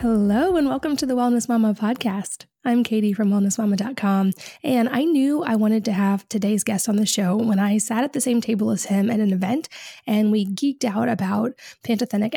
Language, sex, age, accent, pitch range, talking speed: English, female, 20-39, American, 210-245 Hz, 205 wpm